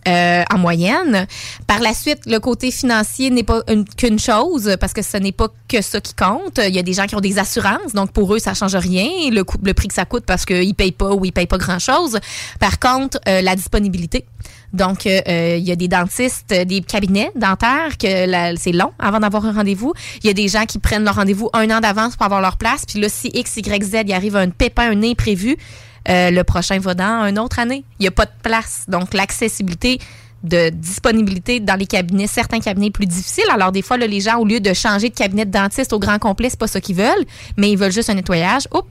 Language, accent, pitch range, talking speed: French, Canadian, 190-230 Hz, 250 wpm